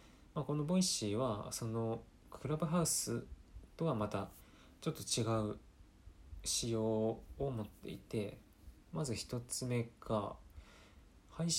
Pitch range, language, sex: 95-135 Hz, Japanese, male